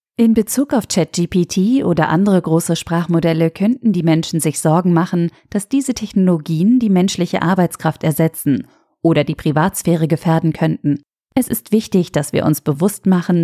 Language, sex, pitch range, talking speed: German, female, 155-190 Hz, 150 wpm